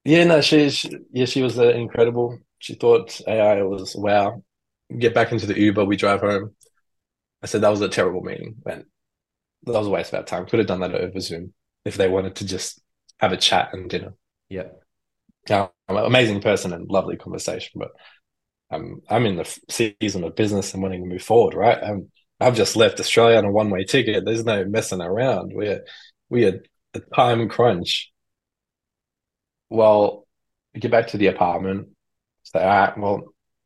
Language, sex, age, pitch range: English, male, 20-39, 95-115 Hz